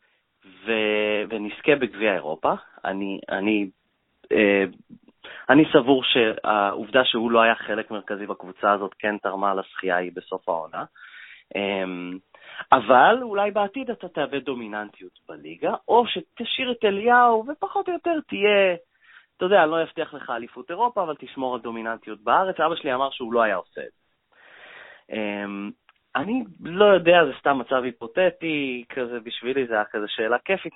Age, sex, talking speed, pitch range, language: 30-49, male, 145 wpm, 105-145 Hz, Hebrew